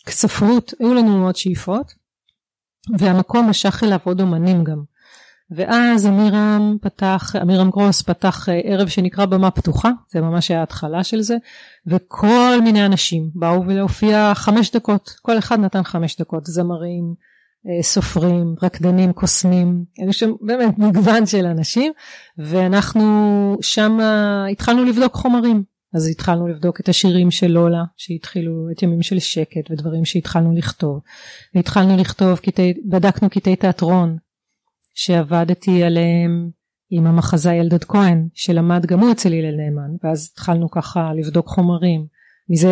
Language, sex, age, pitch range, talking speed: Hebrew, female, 30-49, 170-210 Hz, 130 wpm